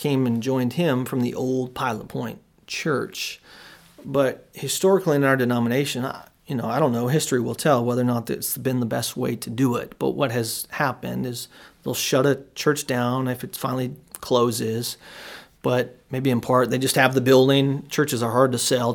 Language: English